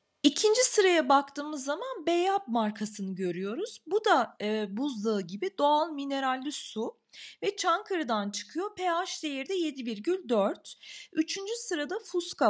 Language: Turkish